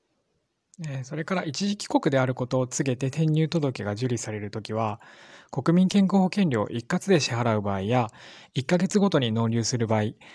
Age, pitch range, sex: 20-39, 120-170 Hz, male